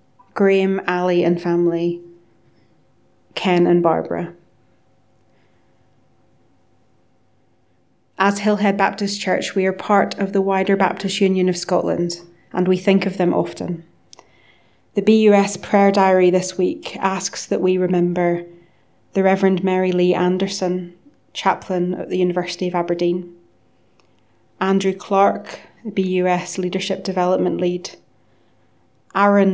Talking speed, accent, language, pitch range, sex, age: 110 wpm, British, English, 175-195 Hz, female, 30-49